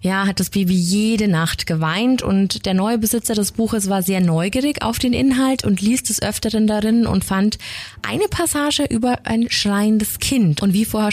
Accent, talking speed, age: German, 190 wpm, 20-39